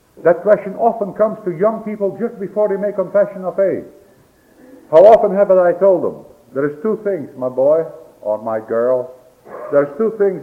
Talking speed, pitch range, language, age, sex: 190 wpm, 100-170 Hz, English, 60-79, male